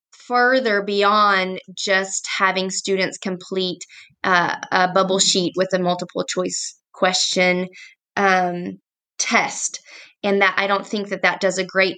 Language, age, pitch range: English, 20-39, 175-200 Hz